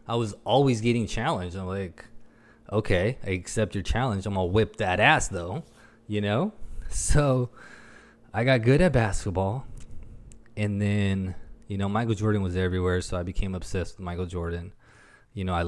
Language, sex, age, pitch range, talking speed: English, male, 20-39, 90-105 Hz, 170 wpm